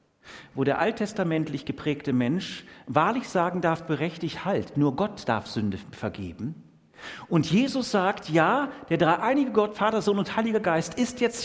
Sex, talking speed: male, 150 wpm